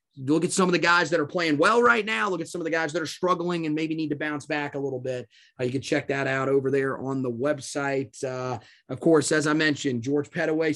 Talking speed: 275 wpm